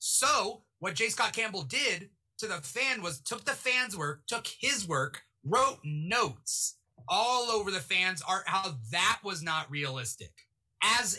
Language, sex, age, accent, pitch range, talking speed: English, male, 30-49, American, 145-200 Hz, 160 wpm